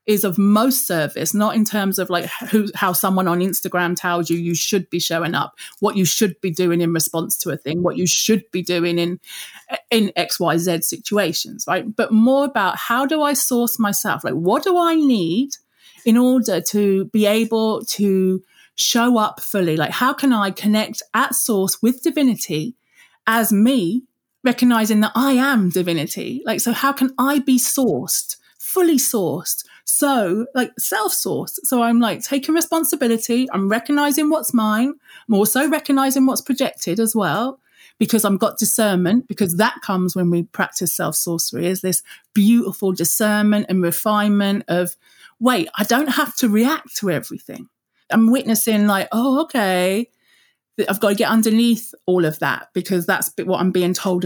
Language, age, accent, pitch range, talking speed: English, 30-49, British, 185-250 Hz, 165 wpm